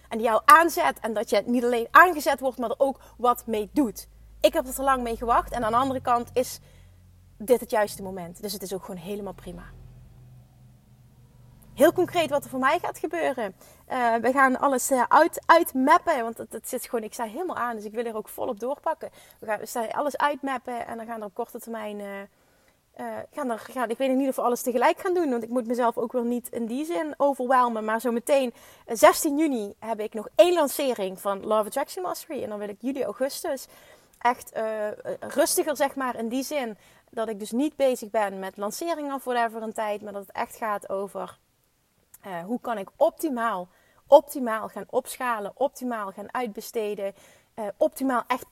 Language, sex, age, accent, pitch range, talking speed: Dutch, female, 30-49, Dutch, 215-275 Hz, 210 wpm